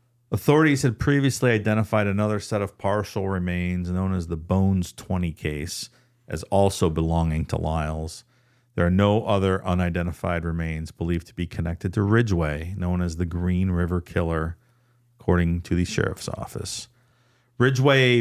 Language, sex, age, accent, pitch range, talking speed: English, male, 50-69, American, 90-120 Hz, 145 wpm